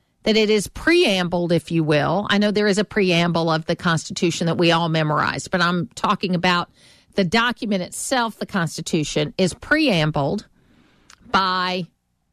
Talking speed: 155 wpm